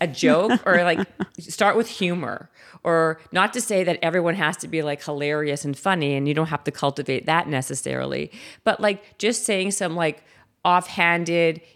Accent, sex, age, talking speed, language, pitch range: American, female, 40-59, 180 wpm, English, 145-185 Hz